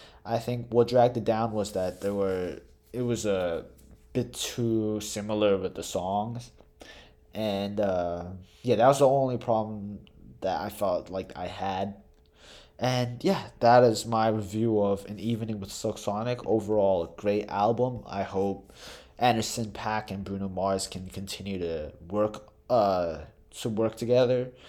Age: 20-39